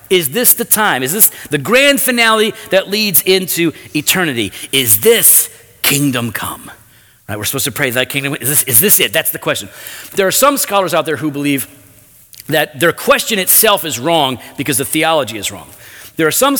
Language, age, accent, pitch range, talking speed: English, 40-59, American, 135-200 Hz, 210 wpm